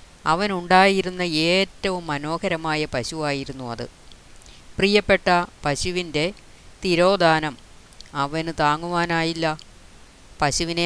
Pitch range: 150-180 Hz